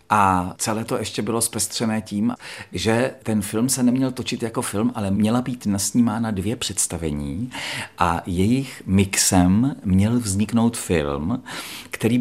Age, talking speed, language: 40-59, 140 wpm, Czech